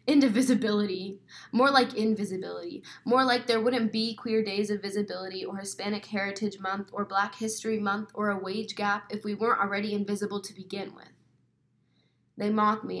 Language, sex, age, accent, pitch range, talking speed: English, female, 10-29, American, 195-230 Hz, 165 wpm